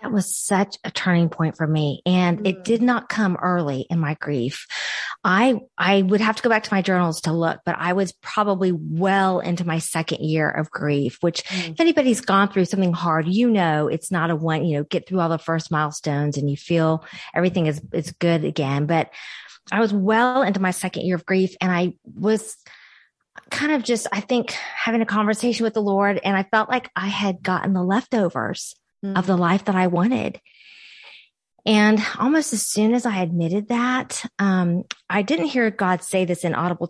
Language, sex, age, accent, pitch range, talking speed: English, female, 40-59, American, 175-220 Hz, 205 wpm